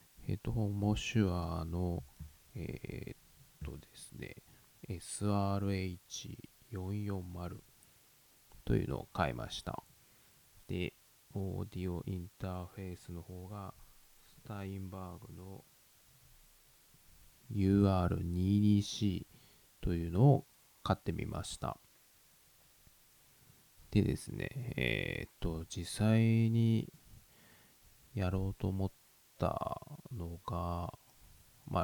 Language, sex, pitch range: Japanese, male, 85-105 Hz